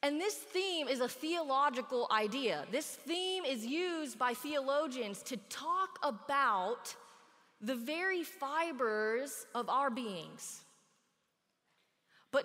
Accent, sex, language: American, female, English